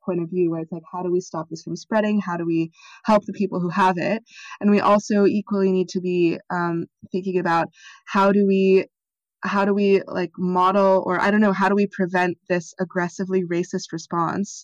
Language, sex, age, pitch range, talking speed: English, female, 20-39, 170-195 Hz, 215 wpm